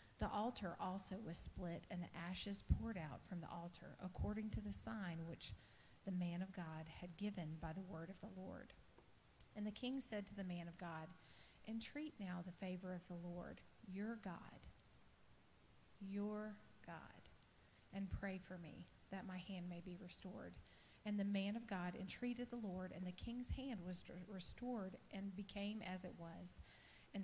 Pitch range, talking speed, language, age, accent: 175-215 Hz, 175 wpm, English, 40-59, American